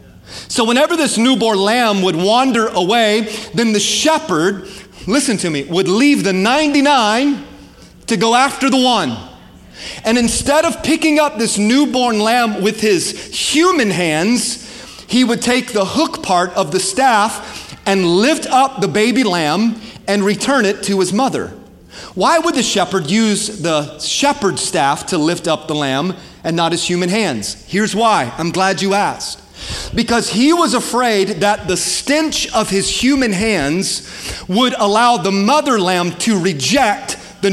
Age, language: 30-49, English